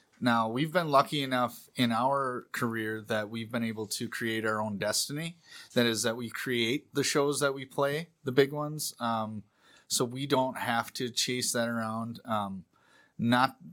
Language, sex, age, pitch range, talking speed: English, male, 30-49, 110-135 Hz, 180 wpm